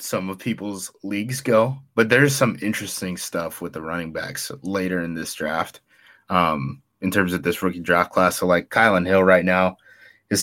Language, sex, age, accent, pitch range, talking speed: English, male, 20-39, American, 90-110 Hz, 190 wpm